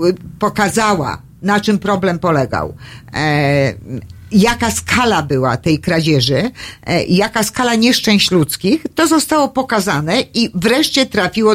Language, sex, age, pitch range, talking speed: Polish, female, 50-69, 165-235 Hz, 105 wpm